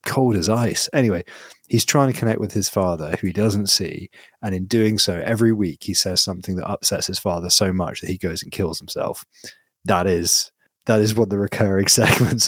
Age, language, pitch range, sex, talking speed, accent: 30-49, English, 85-105 Hz, male, 210 wpm, British